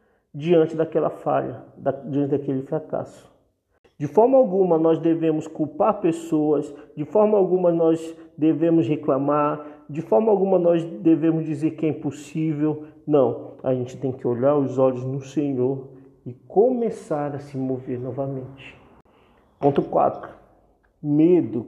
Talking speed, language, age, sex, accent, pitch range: 130 wpm, Portuguese, 50-69, male, Brazilian, 145-200 Hz